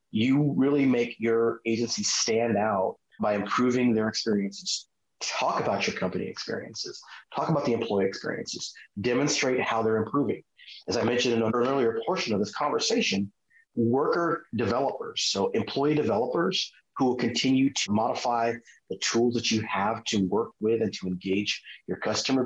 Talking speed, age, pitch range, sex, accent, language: 155 wpm, 30-49, 110-135 Hz, male, American, English